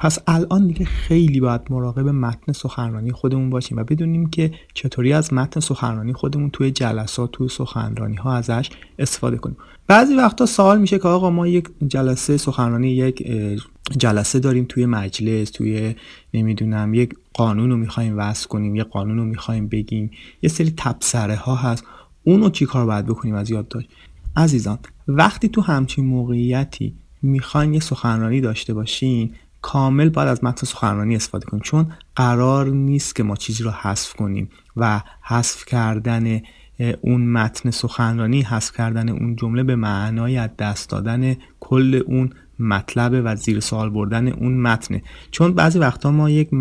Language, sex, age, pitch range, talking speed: Persian, male, 30-49, 115-145 Hz, 150 wpm